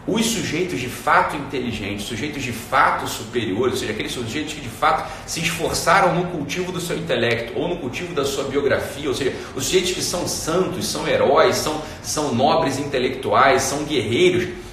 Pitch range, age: 145-195 Hz, 40-59